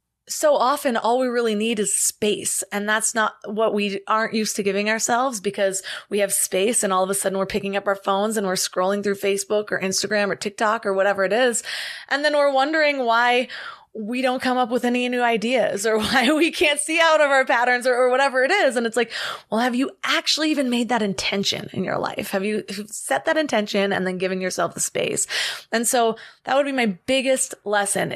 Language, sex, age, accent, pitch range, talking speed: English, female, 20-39, American, 205-285 Hz, 225 wpm